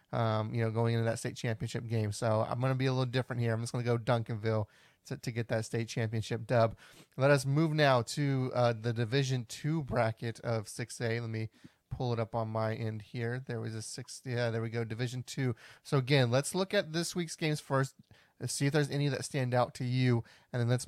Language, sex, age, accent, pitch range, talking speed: English, male, 30-49, American, 115-130 Hz, 240 wpm